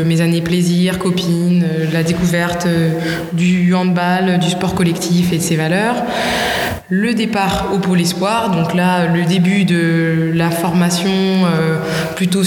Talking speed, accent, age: 135 wpm, French, 20-39